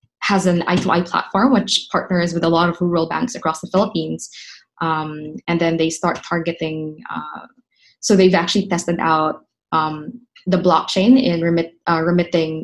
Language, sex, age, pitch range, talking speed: English, female, 20-39, 165-195 Hz, 160 wpm